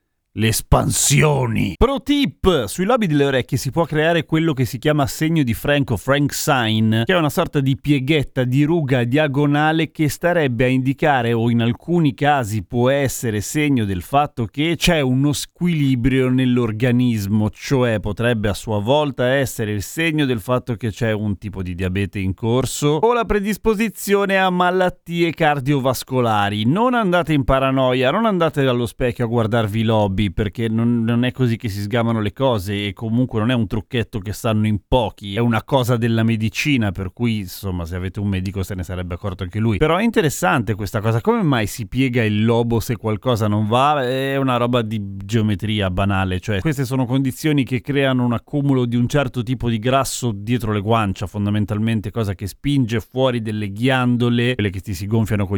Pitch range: 110-145 Hz